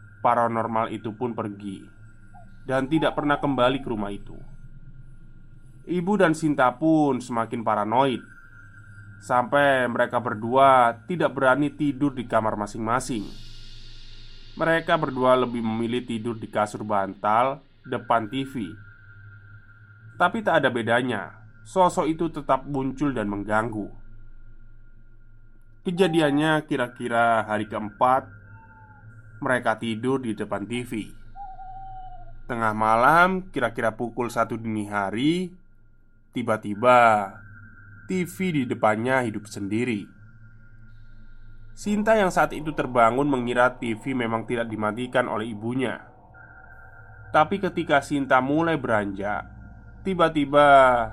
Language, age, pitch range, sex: Indonesian, 20-39, 110-135 Hz, male